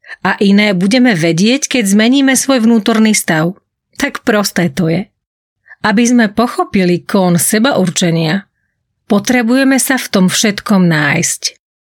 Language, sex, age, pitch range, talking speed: Slovak, female, 30-49, 195-245 Hz, 125 wpm